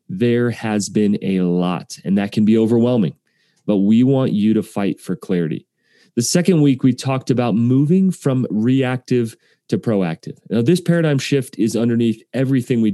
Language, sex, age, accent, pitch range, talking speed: English, male, 30-49, American, 110-140 Hz, 170 wpm